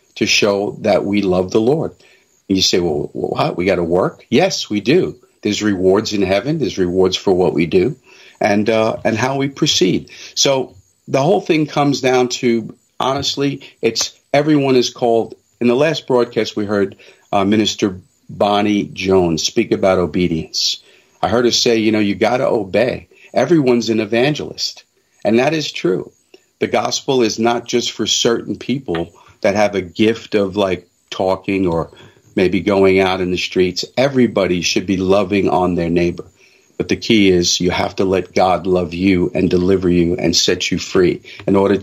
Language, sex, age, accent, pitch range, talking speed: English, male, 50-69, American, 90-115 Hz, 180 wpm